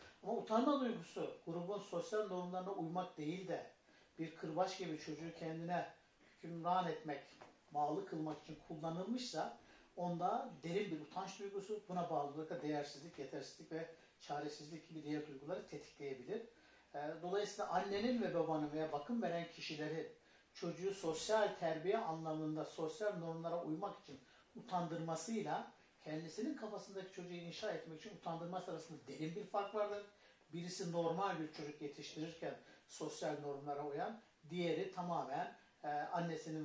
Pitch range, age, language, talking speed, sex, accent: 155-195 Hz, 60-79, Turkish, 125 wpm, male, native